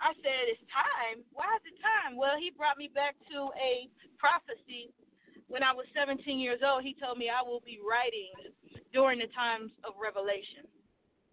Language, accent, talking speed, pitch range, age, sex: English, American, 180 wpm, 215-295 Hz, 20-39, female